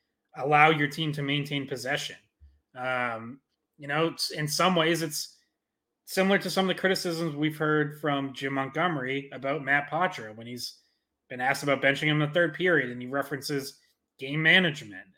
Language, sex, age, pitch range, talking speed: English, male, 30-49, 135-165 Hz, 165 wpm